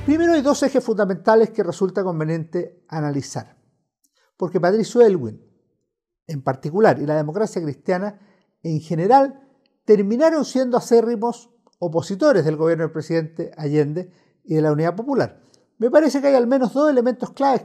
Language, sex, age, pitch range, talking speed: Spanish, male, 50-69, 160-230 Hz, 145 wpm